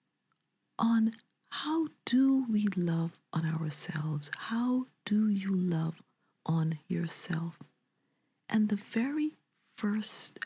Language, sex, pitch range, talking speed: English, female, 165-220 Hz, 100 wpm